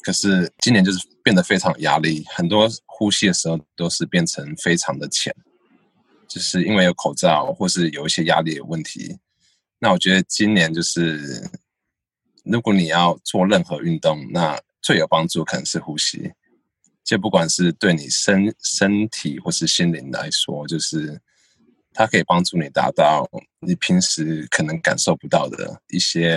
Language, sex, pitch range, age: English, male, 85-105 Hz, 20-39